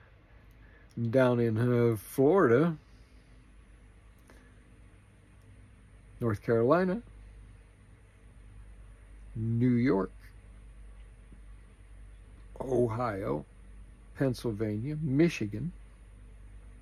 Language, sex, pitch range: English, male, 100-120 Hz